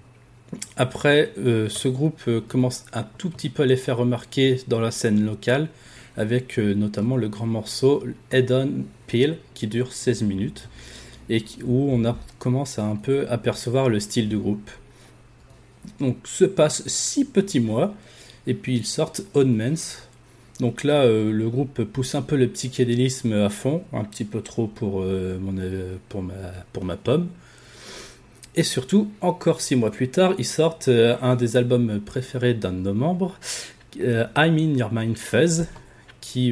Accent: French